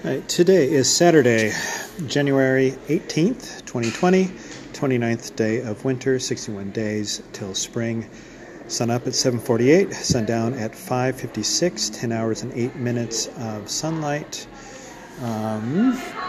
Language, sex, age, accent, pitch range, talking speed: English, male, 40-59, American, 115-145 Hz, 110 wpm